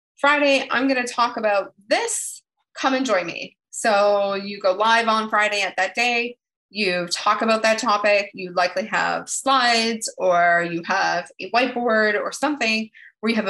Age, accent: 20-39, American